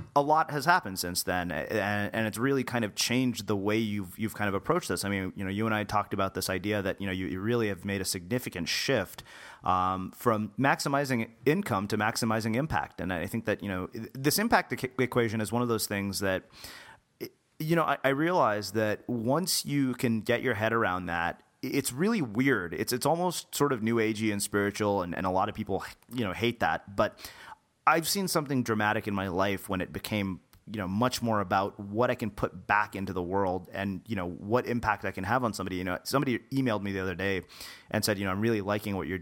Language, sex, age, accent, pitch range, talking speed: English, male, 30-49, American, 95-125 Hz, 235 wpm